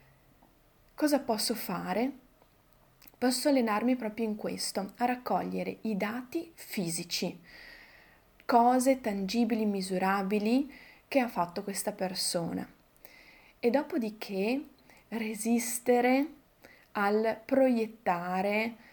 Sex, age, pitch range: female, 20-39, 195-240 Hz